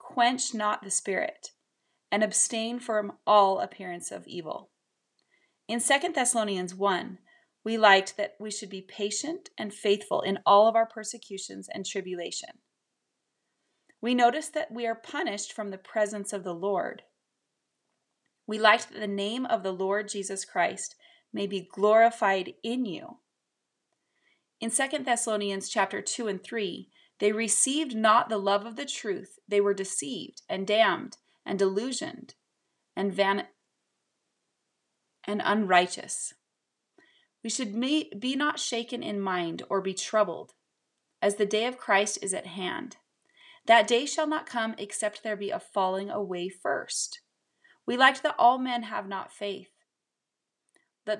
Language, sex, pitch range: English, female, 200-245 Hz